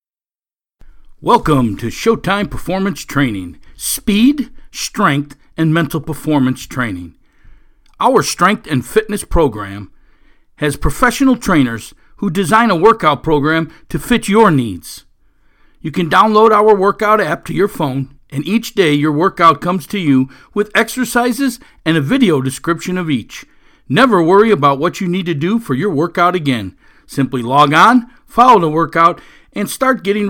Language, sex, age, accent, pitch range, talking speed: English, male, 50-69, American, 145-220 Hz, 150 wpm